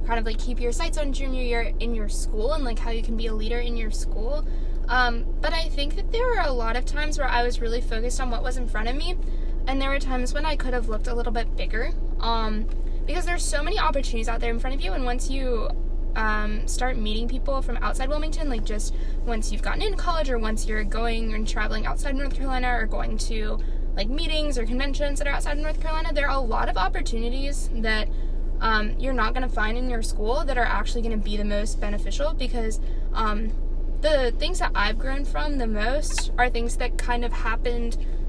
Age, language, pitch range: 10-29, English, 225-280 Hz